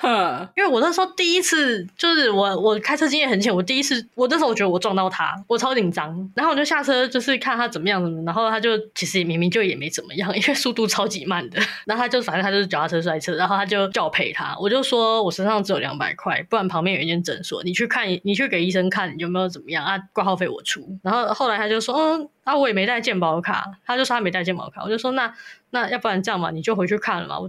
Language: Chinese